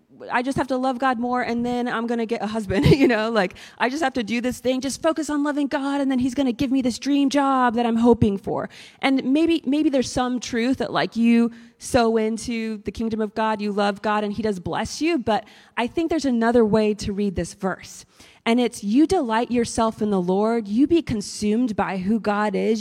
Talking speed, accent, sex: 240 wpm, American, female